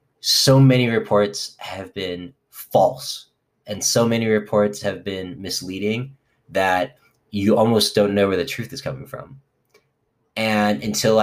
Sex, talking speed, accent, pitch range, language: male, 140 wpm, American, 105-130 Hz, English